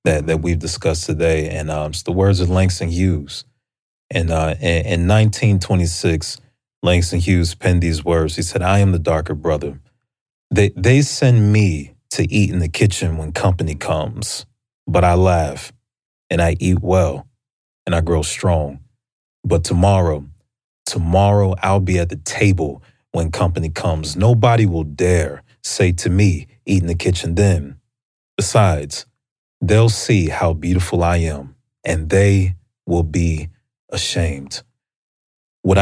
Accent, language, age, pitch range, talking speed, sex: American, English, 30-49, 85-100 Hz, 145 wpm, male